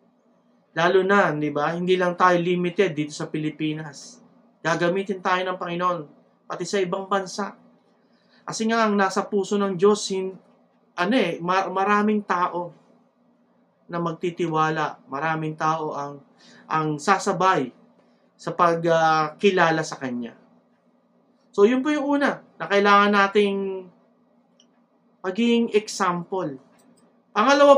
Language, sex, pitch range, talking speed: English, male, 155-205 Hz, 110 wpm